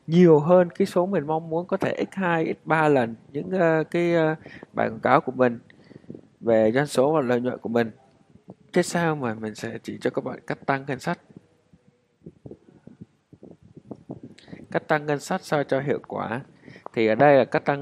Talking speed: 195 wpm